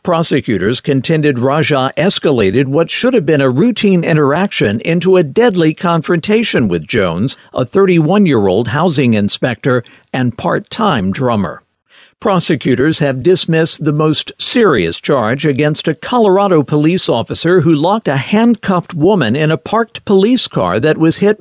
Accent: American